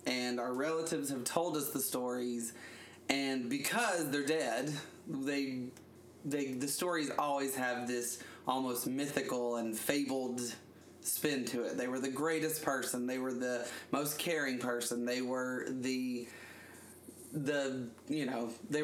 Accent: American